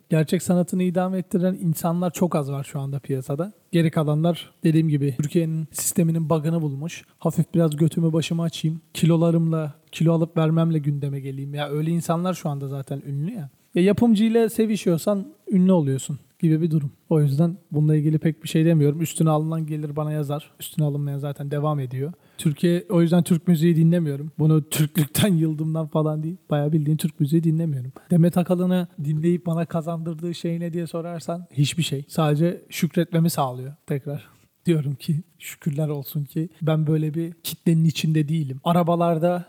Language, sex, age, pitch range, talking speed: Turkish, male, 40-59, 155-175 Hz, 165 wpm